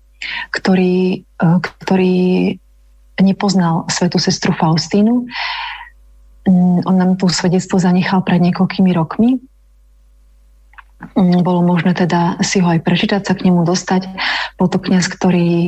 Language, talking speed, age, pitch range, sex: Slovak, 105 wpm, 30-49, 175-190 Hz, female